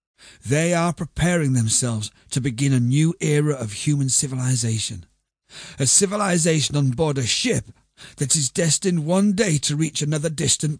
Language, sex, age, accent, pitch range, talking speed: English, male, 40-59, British, 120-160 Hz, 150 wpm